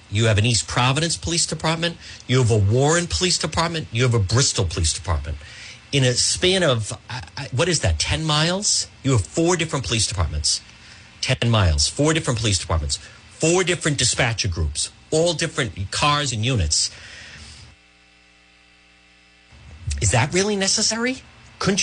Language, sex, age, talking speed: English, male, 50-69, 150 wpm